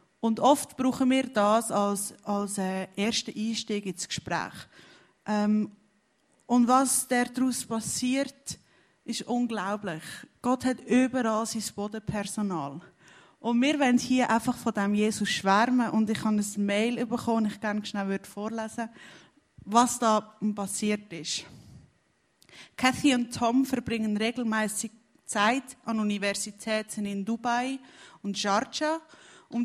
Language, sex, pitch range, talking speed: German, female, 205-240 Hz, 120 wpm